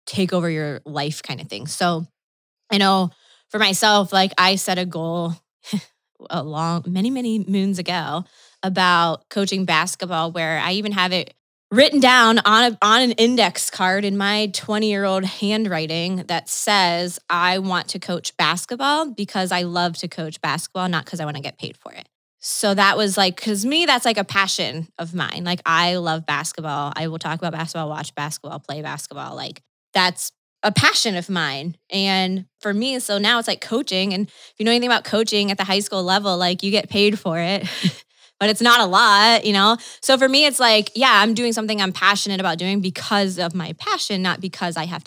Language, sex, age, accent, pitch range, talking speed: English, female, 20-39, American, 175-215 Hz, 200 wpm